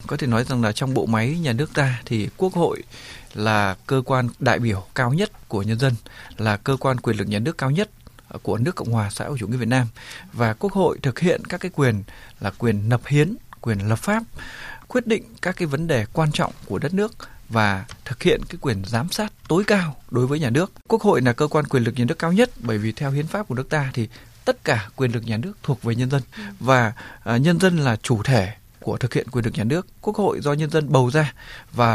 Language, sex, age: Vietnamese, male, 20-39